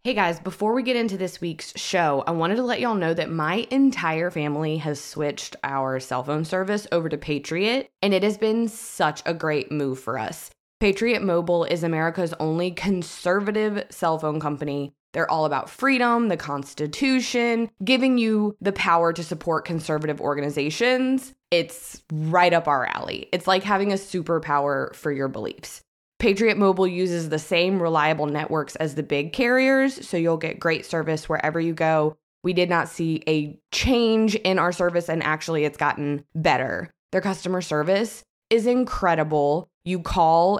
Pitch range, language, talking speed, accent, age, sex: 155-205 Hz, English, 170 wpm, American, 20-39, female